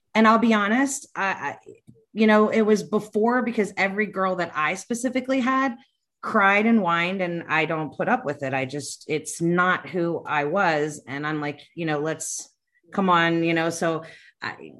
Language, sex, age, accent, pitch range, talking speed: English, female, 30-49, American, 155-215 Hz, 190 wpm